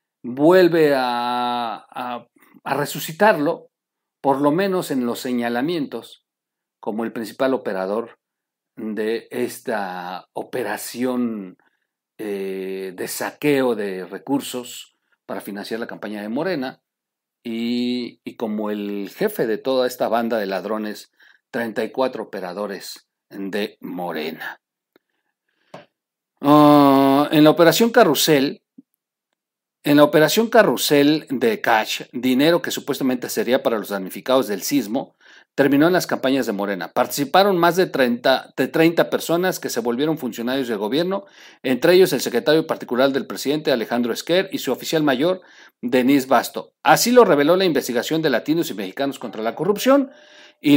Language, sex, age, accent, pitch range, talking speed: Spanish, male, 50-69, Mexican, 115-165 Hz, 130 wpm